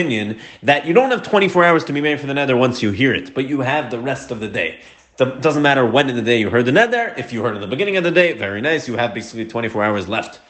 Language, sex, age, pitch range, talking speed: English, male, 30-49, 115-165 Hz, 305 wpm